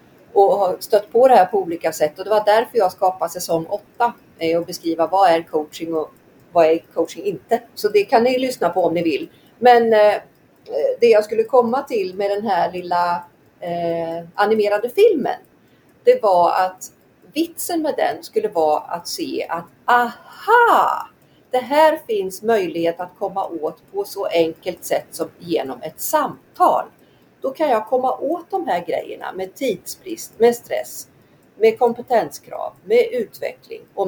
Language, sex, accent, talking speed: Swedish, female, native, 160 wpm